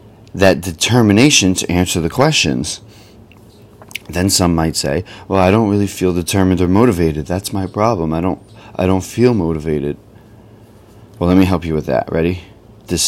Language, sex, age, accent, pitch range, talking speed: English, male, 30-49, American, 90-110 Hz, 165 wpm